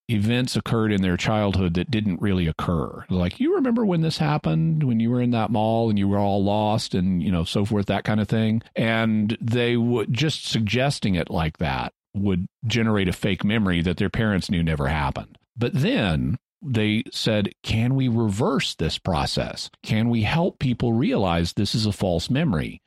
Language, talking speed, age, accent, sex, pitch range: English, 190 wpm, 50-69, American, male, 100-125 Hz